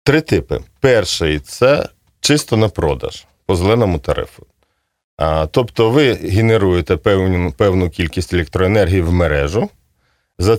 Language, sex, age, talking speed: Russian, male, 40-59, 125 wpm